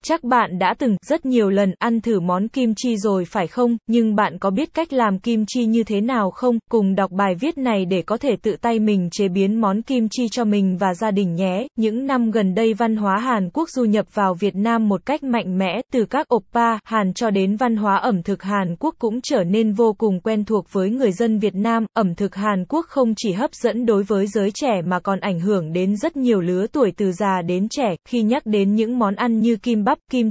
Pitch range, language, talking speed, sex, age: 195-235 Hz, Vietnamese, 250 wpm, female, 20-39